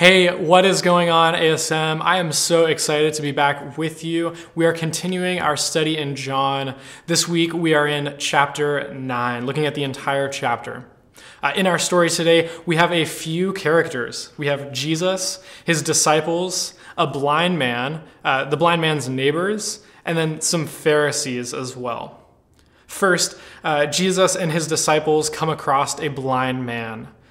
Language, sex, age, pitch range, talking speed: English, male, 20-39, 135-165 Hz, 165 wpm